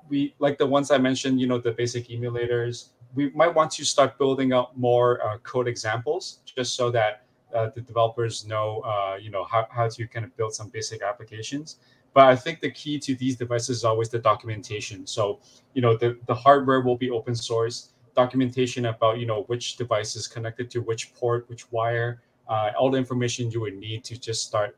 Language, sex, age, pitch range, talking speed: English, male, 20-39, 115-130 Hz, 210 wpm